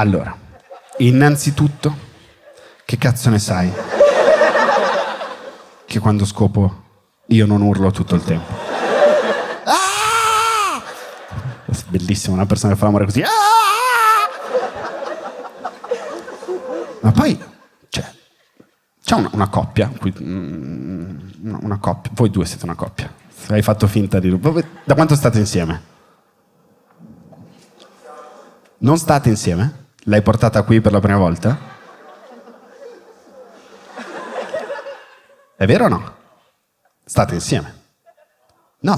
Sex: male